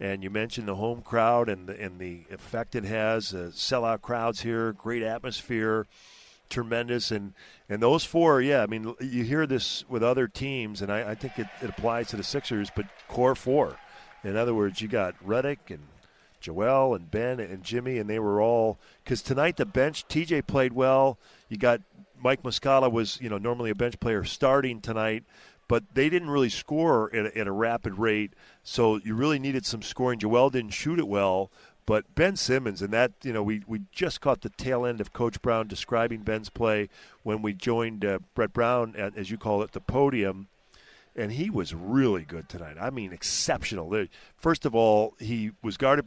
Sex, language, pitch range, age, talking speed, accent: male, English, 105-125 Hz, 40-59, 195 wpm, American